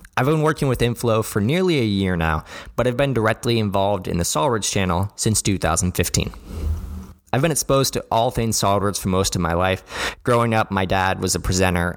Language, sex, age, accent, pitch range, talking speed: English, male, 20-39, American, 90-115 Hz, 200 wpm